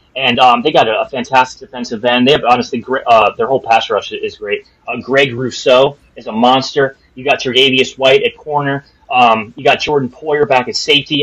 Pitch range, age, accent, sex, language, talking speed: 130-165 Hz, 30-49, American, male, English, 210 wpm